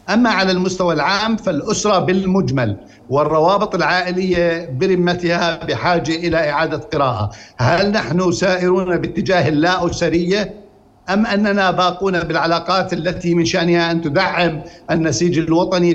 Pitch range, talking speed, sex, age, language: 160-185 Hz, 115 wpm, male, 60-79, Arabic